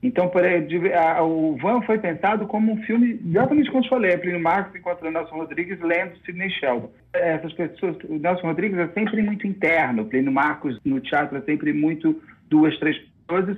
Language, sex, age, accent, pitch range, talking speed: Portuguese, male, 40-59, Brazilian, 155-200 Hz, 190 wpm